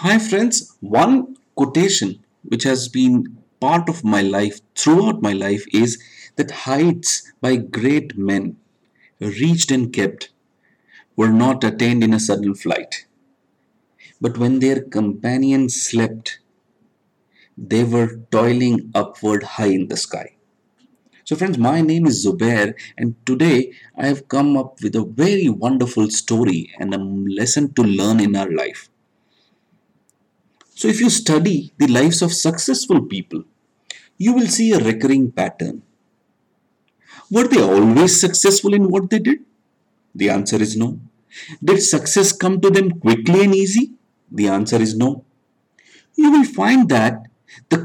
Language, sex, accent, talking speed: English, male, Indian, 140 wpm